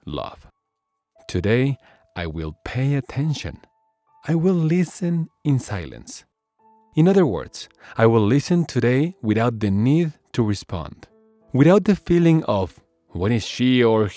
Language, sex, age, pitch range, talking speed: English, male, 40-59, 95-150 Hz, 130 wpm